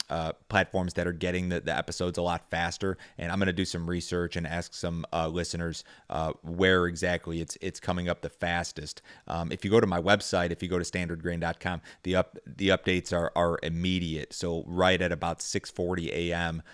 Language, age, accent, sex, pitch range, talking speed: English, 30-49, American, male, 85-95 Hz, 205 wpm